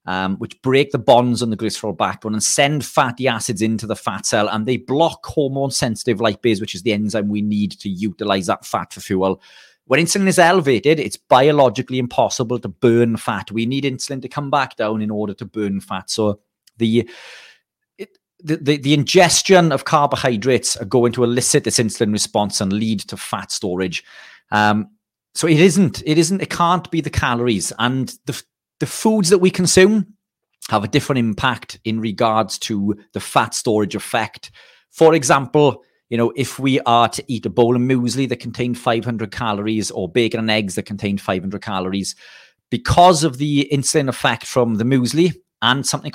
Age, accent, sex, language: 40-59, British, male, English